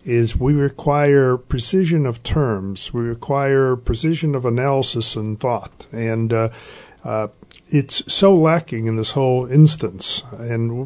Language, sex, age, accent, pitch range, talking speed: English, male, 50-69, American, 125-165 Hz, 135 wpm